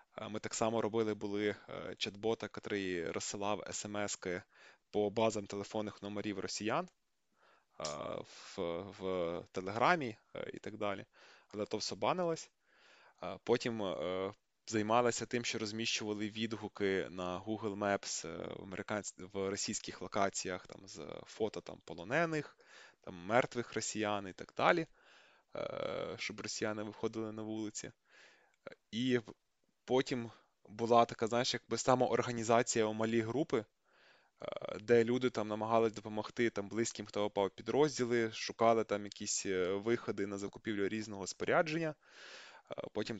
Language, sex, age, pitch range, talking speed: Ukrainian, male, 20-39, 105-115 Hz, 115 wpm